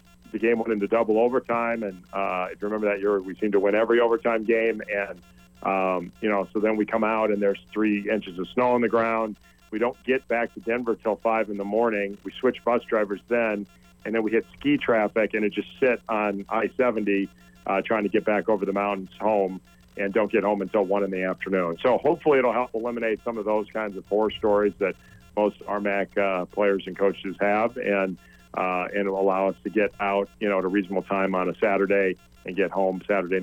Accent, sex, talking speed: American, male, 230 wpm